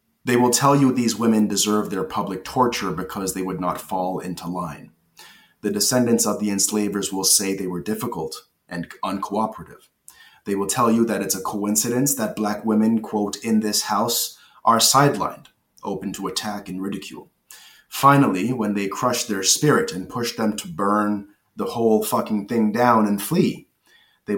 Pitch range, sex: 95-120 Hz, male